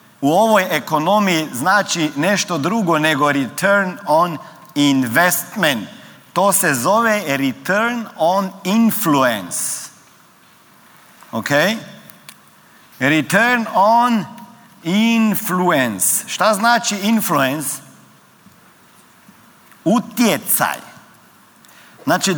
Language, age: Croatian, 50-69